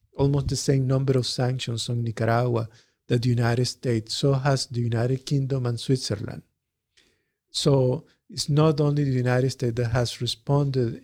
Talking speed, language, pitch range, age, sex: 160 wpm, Danish, 120-140 Hz, 50-69, male